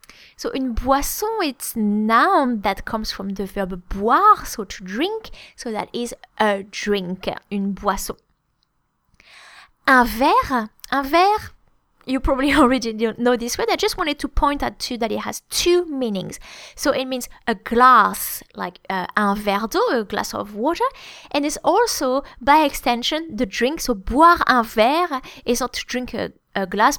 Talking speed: 170 wpm